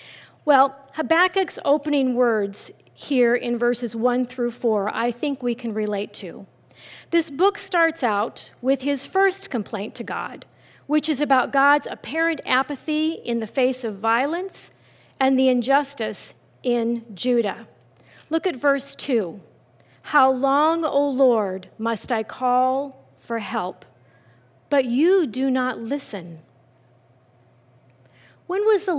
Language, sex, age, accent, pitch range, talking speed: English, female, 40-59, American, 200-280 Hz, 130 wpm